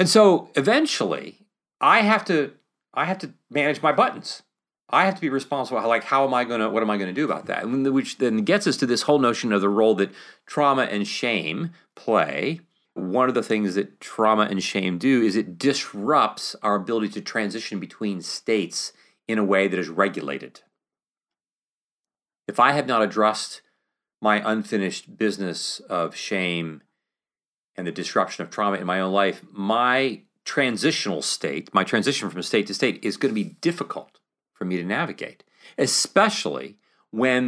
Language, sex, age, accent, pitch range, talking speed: English, male, 40-59, American, 100-135 Hz, 180 wpm